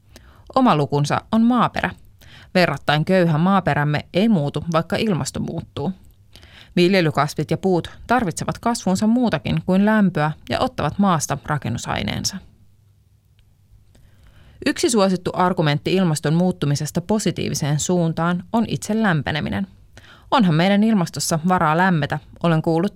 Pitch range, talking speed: 135-190 Hz, 105 wpm